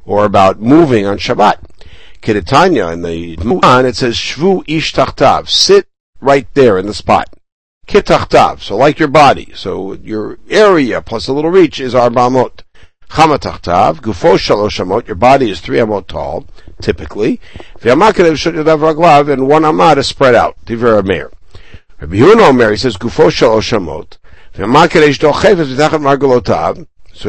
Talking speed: 145 wpm